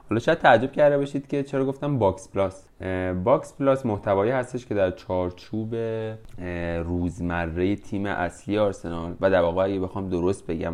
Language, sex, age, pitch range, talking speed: English, male, 20-39, 90-110 Hz, 150 wpm